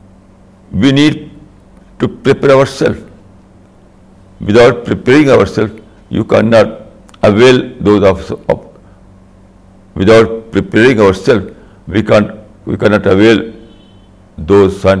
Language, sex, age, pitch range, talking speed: Urdu, male, 60-79, 95-110 Hz, 90 wpm